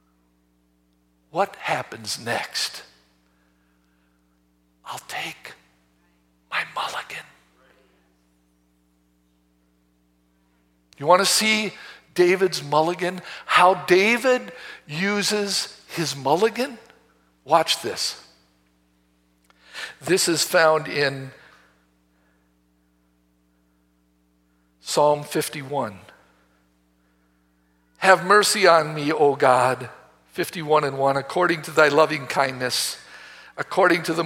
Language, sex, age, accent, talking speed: English, male, 60-79, American, 75 wpm